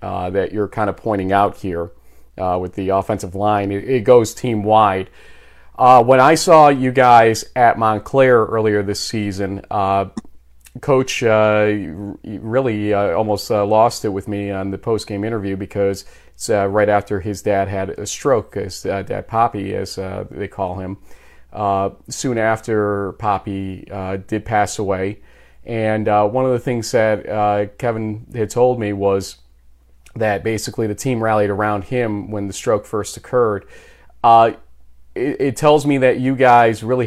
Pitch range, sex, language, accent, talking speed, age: 95-110 Hz, male, English, American, 165 wpm, 40-59